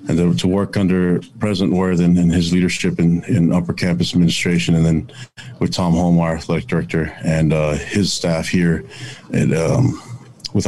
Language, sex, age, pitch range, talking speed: English, male, 30-49, 85-100 Hz, 180 wpm